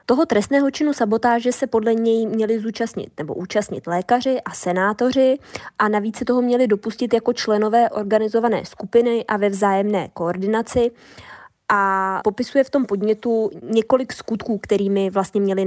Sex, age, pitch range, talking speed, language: female, 20-39, 190-225 Hz, 145 wpm, Czech